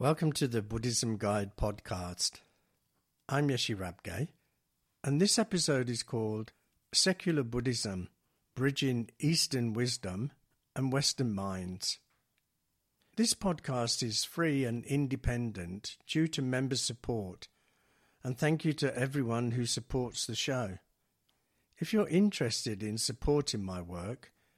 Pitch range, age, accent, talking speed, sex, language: 110-145 Hz, 60-79, British, 115 wpm, male, English